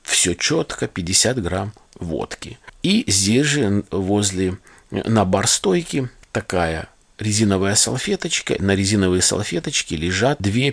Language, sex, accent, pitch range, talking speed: Russian, male, native, 95-120 Hz, 105 wpm